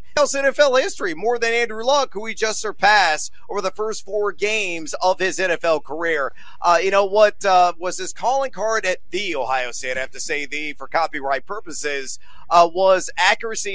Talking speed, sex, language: 190 wpm, male, English